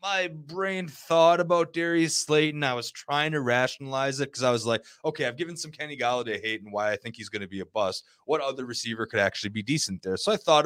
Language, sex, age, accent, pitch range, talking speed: English, male, 20-39, American, 110-150 Hz, 250 wpm